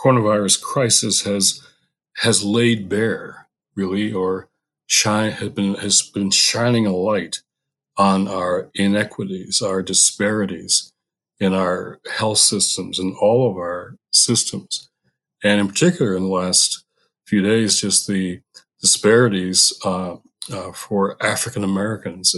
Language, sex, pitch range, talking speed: English, male, 95-115 Hz, 125 wpm